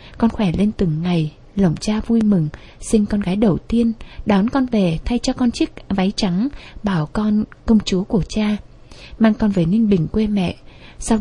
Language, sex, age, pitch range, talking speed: Vietnamese, female, 20-39, 180-225 Hz, 200 wpm